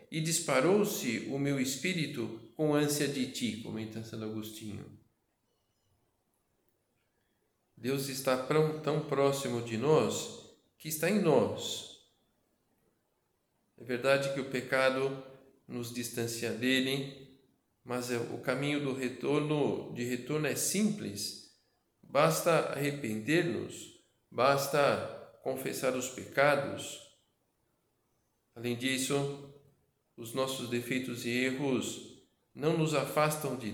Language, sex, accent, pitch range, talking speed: Portuguese, male, Brazilian, 120-145 Hz, 95 wpm